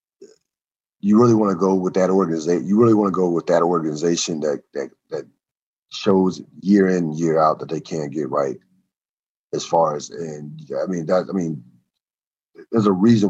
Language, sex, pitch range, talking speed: English, male, 85-110 Hz, 185 wpm